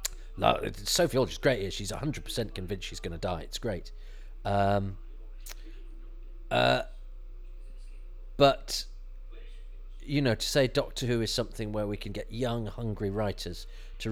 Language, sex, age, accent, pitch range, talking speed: English, male, 40-59, British, 110-150 Hz, 140 wpm